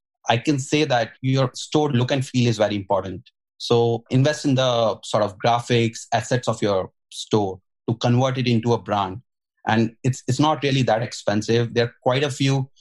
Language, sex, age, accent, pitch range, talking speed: English, male, 30-49, Indian, 110-130 Hz, 190 wpm